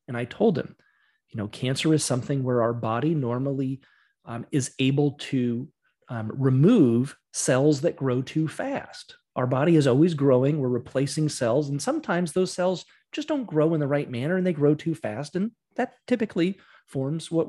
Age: 30-49